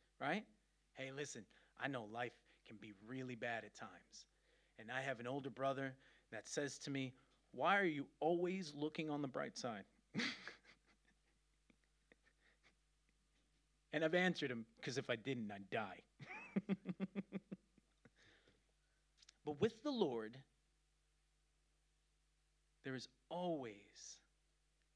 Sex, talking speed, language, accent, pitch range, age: male, 115 wpm, English, American, 130-220 Hz, 30-49